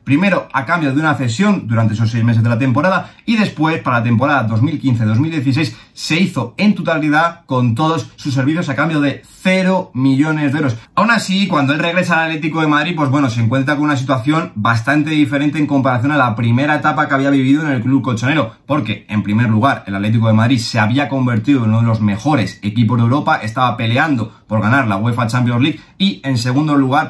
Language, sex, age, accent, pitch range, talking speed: Spanish, male, 30-49, Spanish, 120-160 Hz, 215 wpm